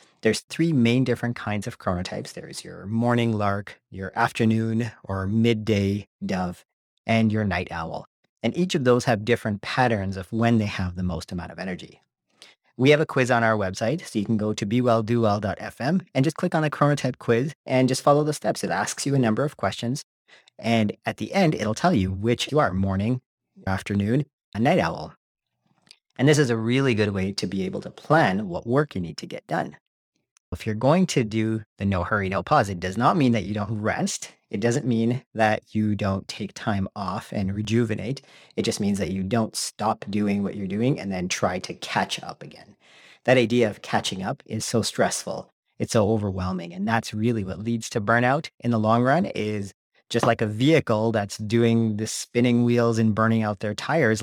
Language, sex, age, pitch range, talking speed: English, male, 40-59, 100-120 Hz, 205 wpm